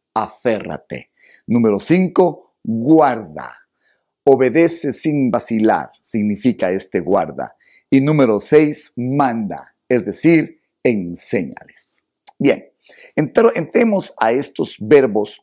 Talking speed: 85 wpm